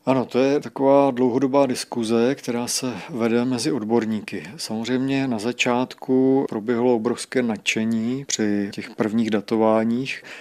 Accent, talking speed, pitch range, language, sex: native, 120 wpm, 110-125 Hz, Czech, male